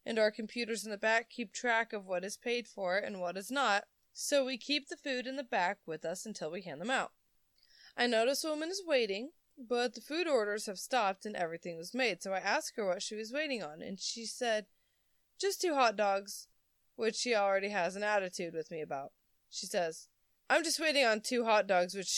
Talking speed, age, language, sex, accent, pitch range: 225 wpm, 20-39, English, female, American, 195-265 Hz